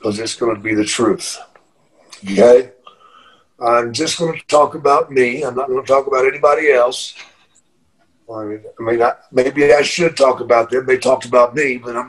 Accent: American